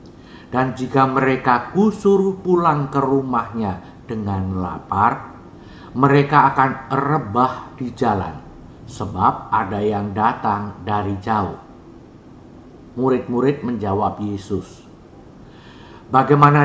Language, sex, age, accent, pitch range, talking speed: Indonesian, male, 50-69, native, 105-140 Hz, 85 wpm